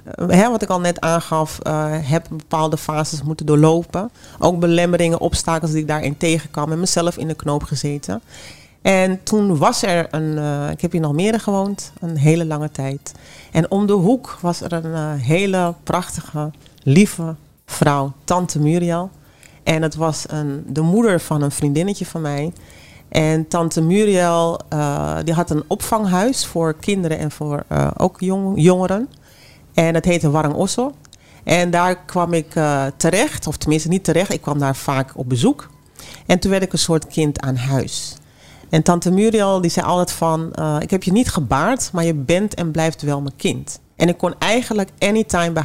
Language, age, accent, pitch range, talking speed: Dutch, 40-59, Dutch, 150-180 Hz, 185 wpm